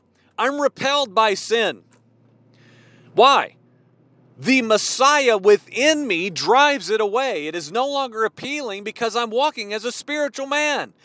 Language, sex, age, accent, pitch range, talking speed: English, male, 40-59, American, 170-245 Hz, 130 wpm